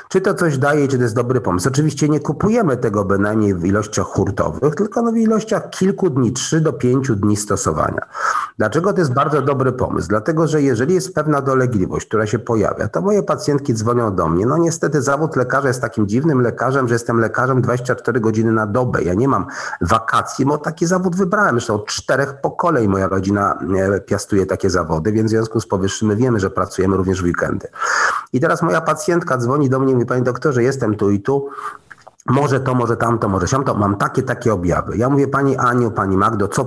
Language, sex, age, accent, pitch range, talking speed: Polish, male, 50-69, native, 105-150 Hz, 205 wpm